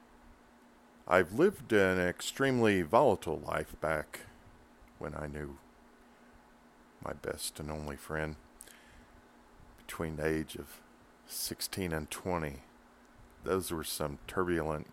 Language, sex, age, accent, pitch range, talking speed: English, male, 50-69, American, 75-85 Hz, 105 wpm